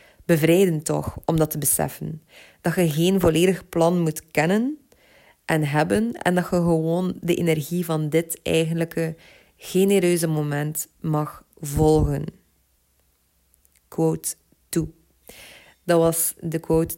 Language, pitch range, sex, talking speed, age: Dutch, 155-170 Hz, female, 120 wpm, 20-39